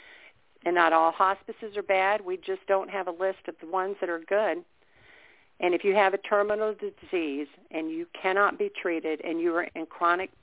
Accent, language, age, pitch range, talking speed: American, English, 50-69, 160-195 Hz, 200 wpm